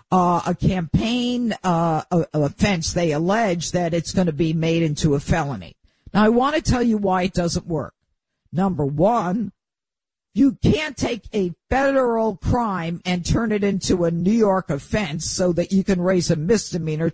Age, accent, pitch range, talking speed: 50-69, American, 170-220 Hz, 180 wpm